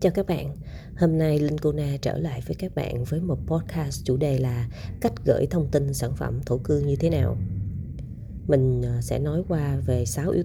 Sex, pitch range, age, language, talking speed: female, 120-150 Hz, 20-39, Vietnamese, 205 wpm